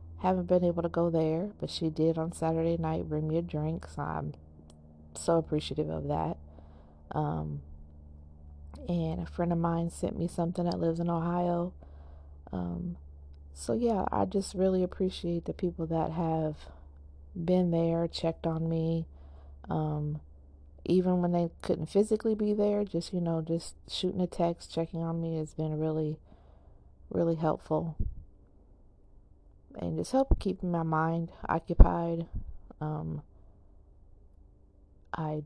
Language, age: English, 40-59